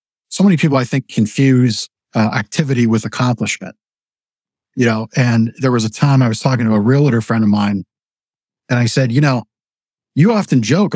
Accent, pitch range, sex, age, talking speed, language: American, 110-145 Hz, male, 50-69, 185 wpm, English